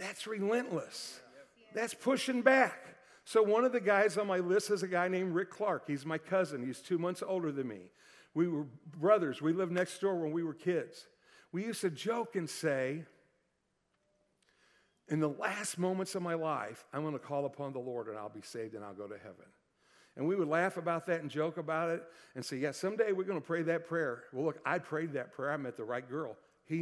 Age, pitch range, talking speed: 60-79, 140-180 Hz, 225 wpm